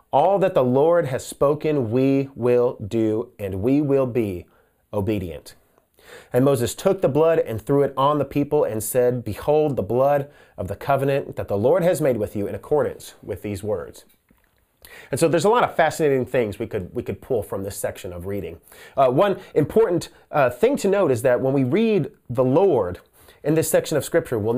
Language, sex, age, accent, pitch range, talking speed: English, male, 30-49, American, 120-155 Hz, 205 wpm